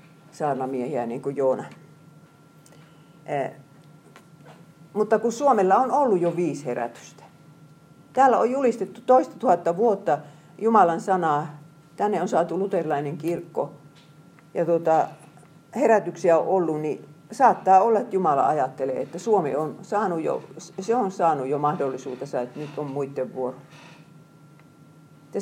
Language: Finnish